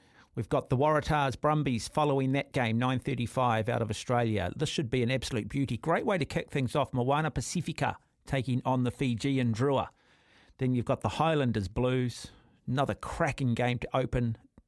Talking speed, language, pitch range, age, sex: 170 wpm, English, 120-160 Hz, 50-69, male